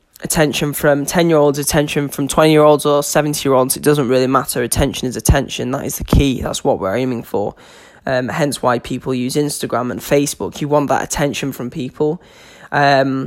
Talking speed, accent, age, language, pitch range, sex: 175 wpm, British, 10-29, English, 130-150 Hz, male